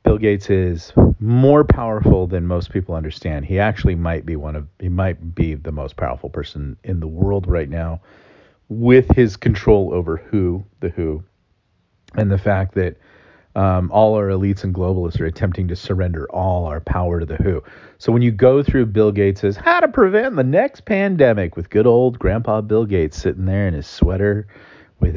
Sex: male